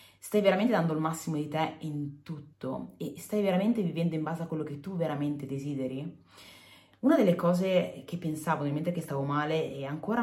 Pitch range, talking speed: 145-190 Hz, 195 wpm